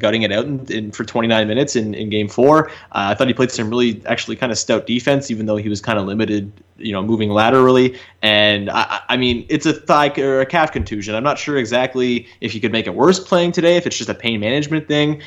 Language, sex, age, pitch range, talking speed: English, male, 20-39, 110-130 Hz, 255 wpm